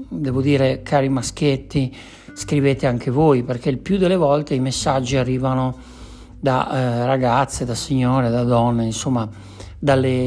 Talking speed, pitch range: 140 wpm, 125-155 Hz